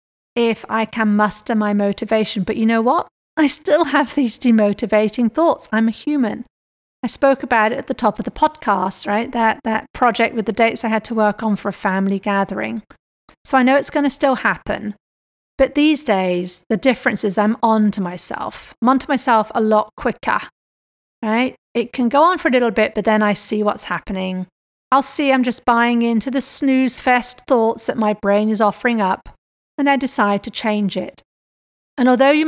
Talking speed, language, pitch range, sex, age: 200 wpm, English, 215-255 Hz, female, 40-59